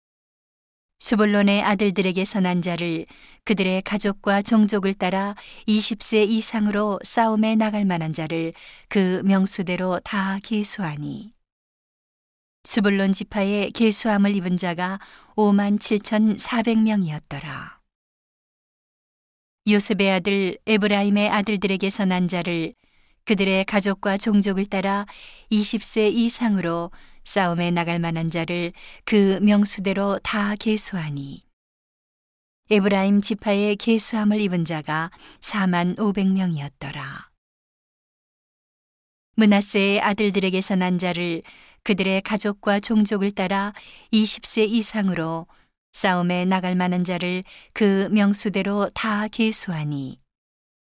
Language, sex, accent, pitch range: Korean, female, native, 180-210 Hz